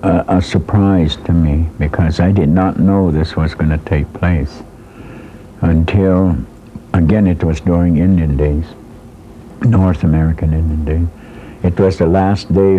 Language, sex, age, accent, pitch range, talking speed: English, male, 60-79, American, 75-90 Hz, 150 wpm